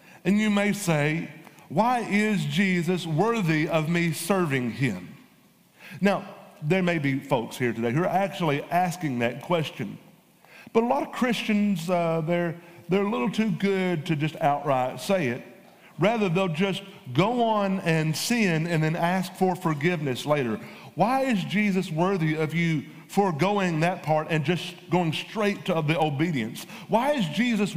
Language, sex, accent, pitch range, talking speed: English, male, American, 160-210 Hz, 160 wpm